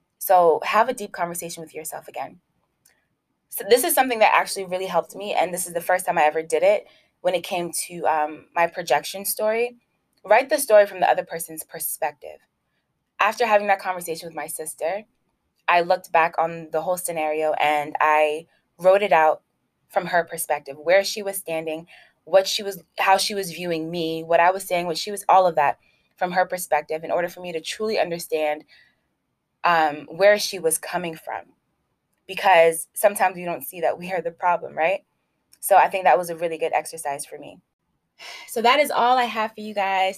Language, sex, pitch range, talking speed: English, female, 160-195 Hz, 200 wpm